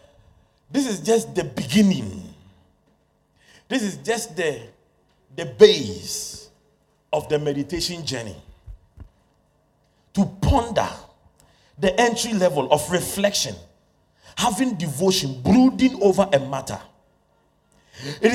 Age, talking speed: 40-59, 95 wpm